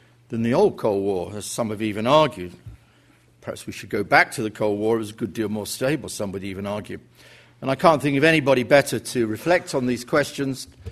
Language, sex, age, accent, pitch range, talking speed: English, male, 50-69, British, 115-145 Hz, 230 wpm